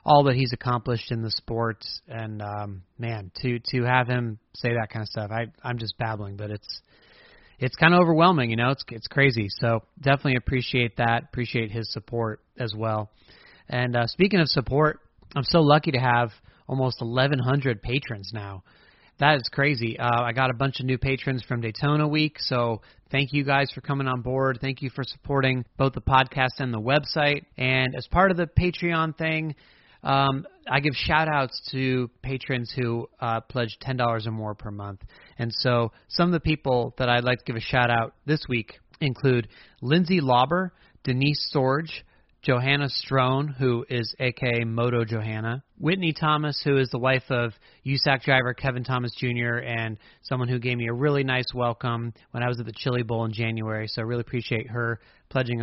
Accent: American